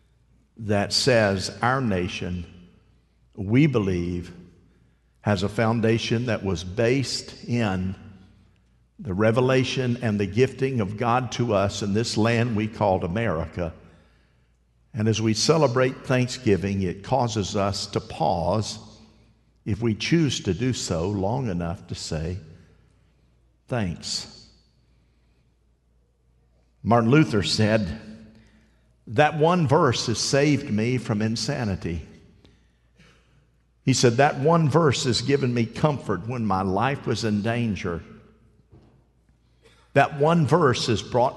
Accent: American